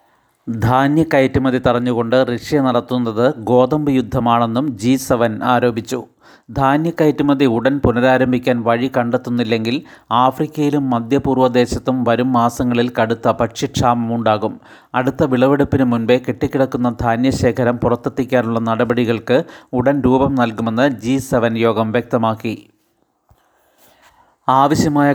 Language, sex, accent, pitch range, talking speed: Malayalam, male, native, 120-130 Hz, 80 wpm